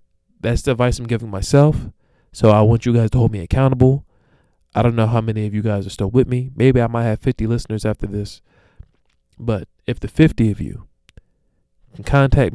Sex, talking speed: male, 205 wpm